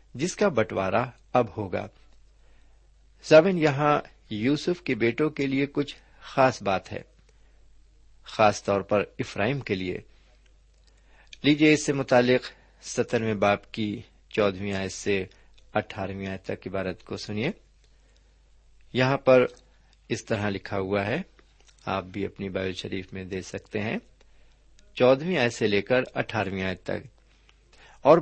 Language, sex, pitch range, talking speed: Urdu, male, 95-140 Hz, 135 wpm